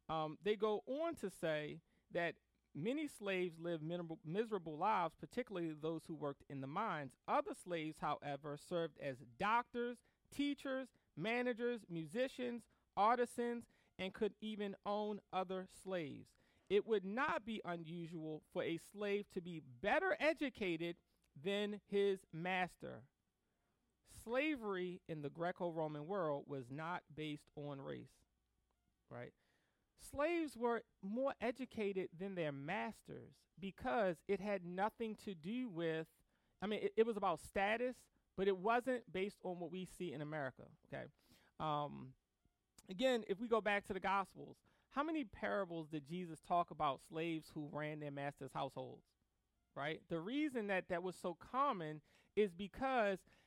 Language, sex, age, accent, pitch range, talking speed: English, male, 40-59, American, 160-220 Hz, 140 wpm